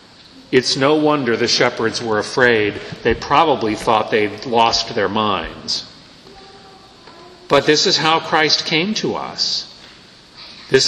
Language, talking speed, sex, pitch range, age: English, 125 wpm, male, 130-170 Hz, 50-69